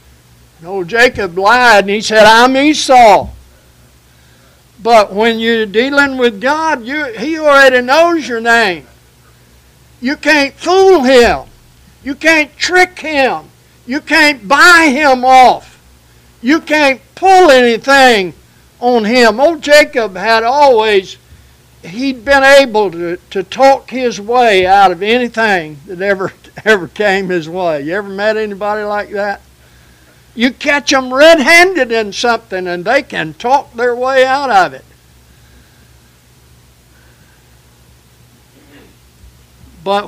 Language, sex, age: English, male, 60-79